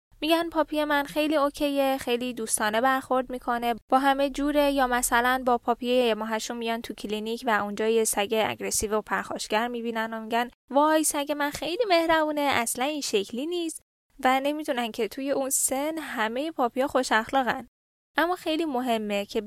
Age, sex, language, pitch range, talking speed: 10-29, female, Persian, 225-280 Hz, 165 wpm